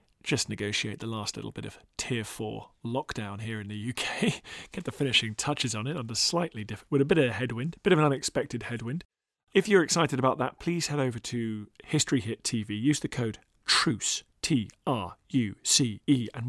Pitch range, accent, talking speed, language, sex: 115-145 Hz, British, 210 wpm, English, male